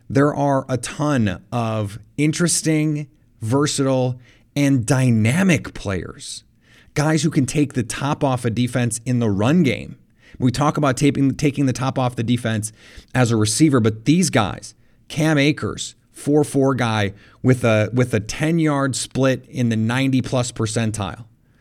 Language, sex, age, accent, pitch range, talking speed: English, male, 30-49, American, 115-145 Hz, 155 wpm